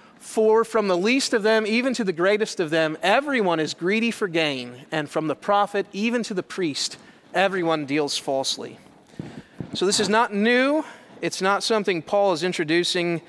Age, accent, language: 30-49, American, English